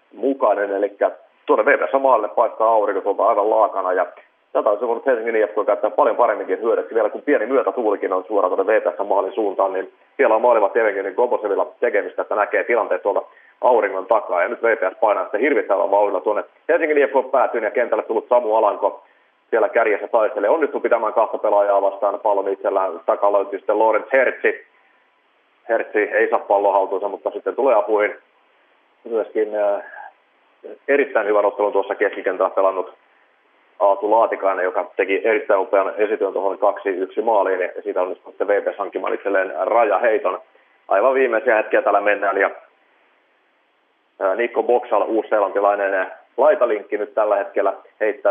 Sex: male